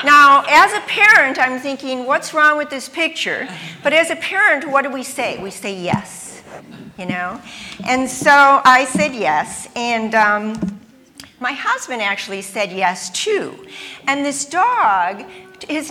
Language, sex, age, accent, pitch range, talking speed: English, female, 50-69, American, 210-290 Hz, 155 wpm